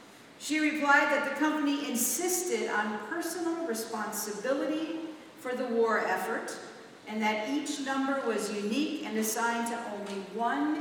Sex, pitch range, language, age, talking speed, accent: female, 205-275 Hz, English, 50-69, 135 wpm, American